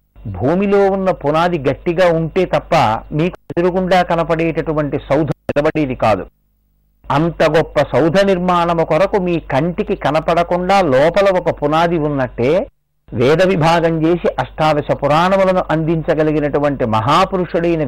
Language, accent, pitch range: Telugu, native, 140-180 Hz